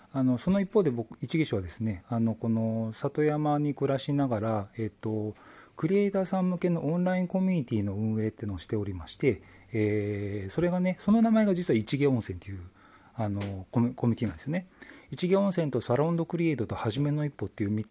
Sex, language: male, Japanese